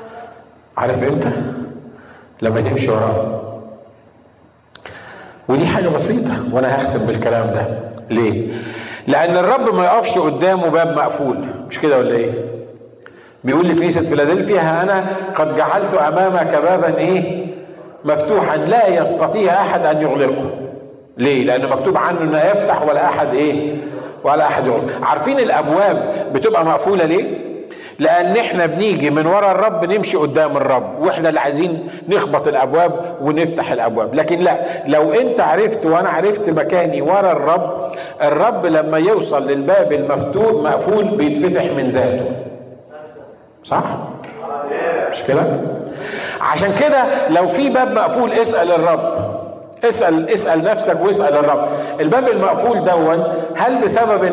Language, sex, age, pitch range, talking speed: Arabic, male, 50-69, 135-190 Hz, 125 wpm